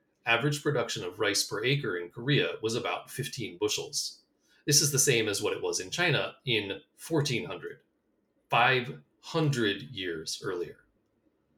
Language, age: English, 30-49